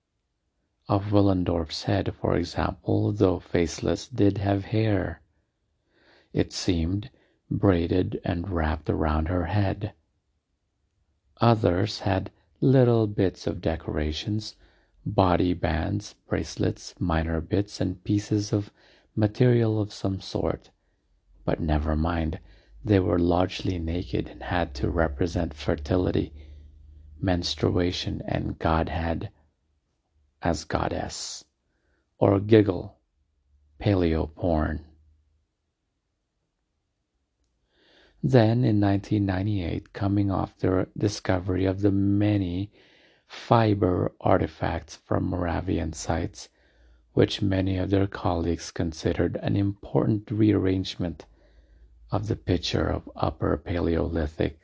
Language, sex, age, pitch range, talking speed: English, male, 50-69, 80-100 Hz, 95 wpm